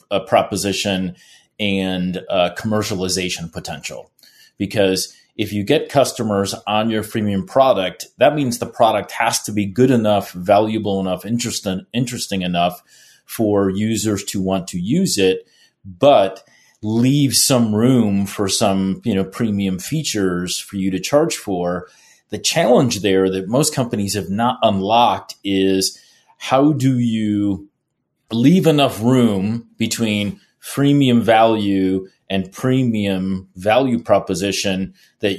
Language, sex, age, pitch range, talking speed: English, male, 30-49, 95-120 Hz, 125 wpm